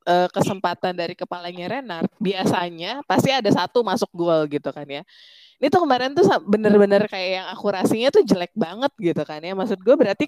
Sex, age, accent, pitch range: female, 20-39, native, 165-235 Hz